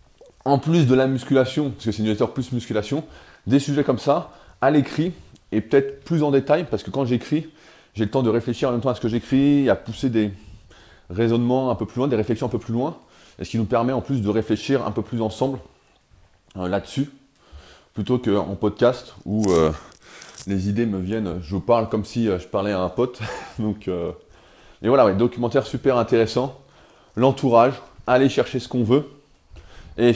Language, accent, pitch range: French, French, 110-135 Hz